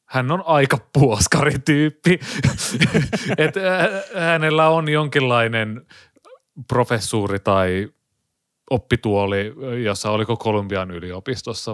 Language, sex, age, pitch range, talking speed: Finnish, male, 30-49, 105-145 Hz, 75 wpm